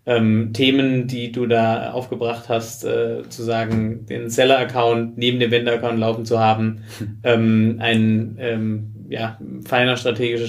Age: 30-49